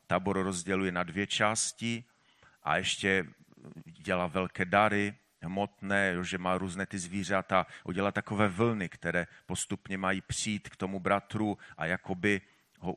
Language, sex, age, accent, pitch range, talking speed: Czech, male, 40-59, native, 95-120 Hz, 135 wpm